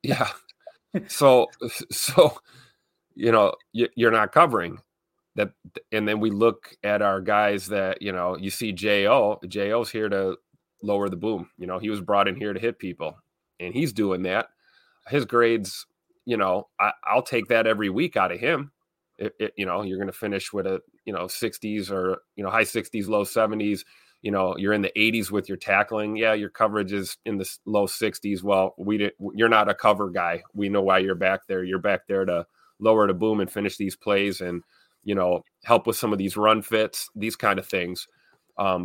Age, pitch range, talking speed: 30-49, 95-110 Hz, 200 wpm